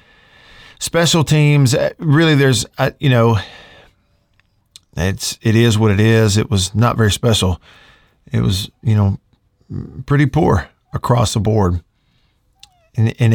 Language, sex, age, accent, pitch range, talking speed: English, male, 50-69, American, 100-125 Hz, 125 wpm